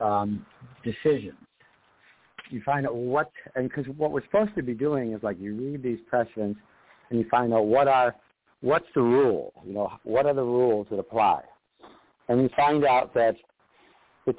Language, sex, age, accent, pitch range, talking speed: English, male, 60-79, American, 115-135 Hz, 180 wpm